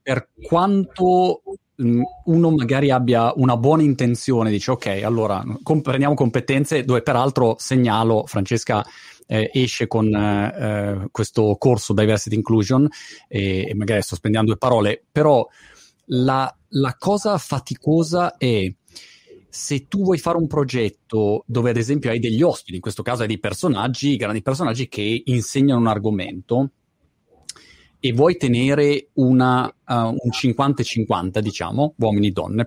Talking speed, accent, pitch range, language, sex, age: 130 wpm, native, 110-145 Hz, Italian, male, 30-49